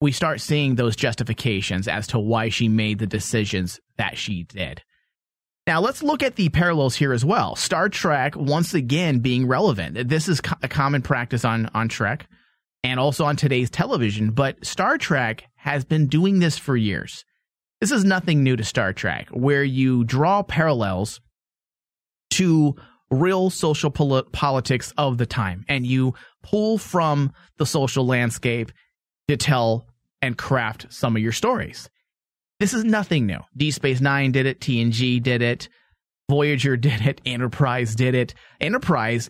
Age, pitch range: 30-49, 120-150 Hz